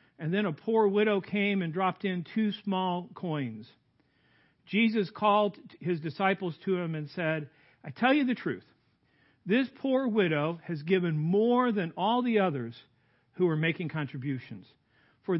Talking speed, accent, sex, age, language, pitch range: 155 wpm, American, male, 50-69, English, 150-215 Hz